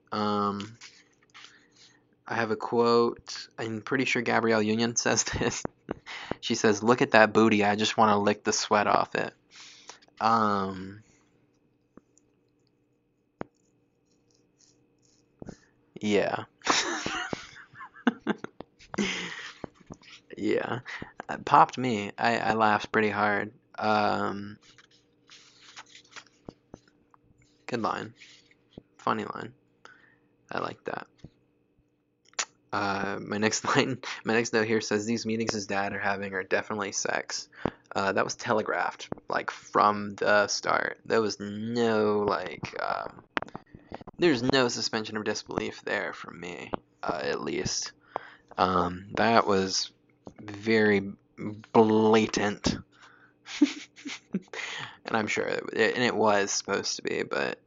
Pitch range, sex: 95-115 Hz, male